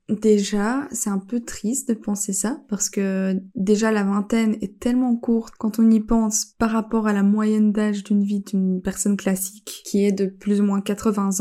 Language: French